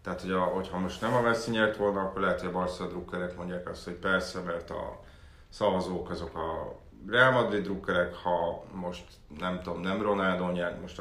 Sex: male